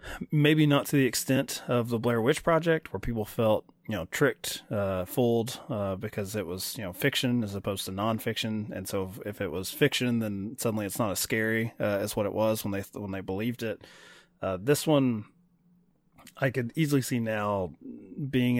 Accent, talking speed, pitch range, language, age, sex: American, 200 wpm, 100-130 Hz, English, 20-39, male